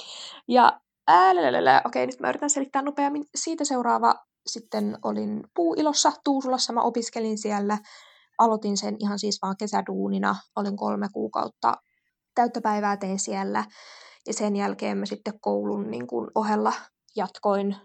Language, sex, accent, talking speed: Finnish, female, native, 135 wpm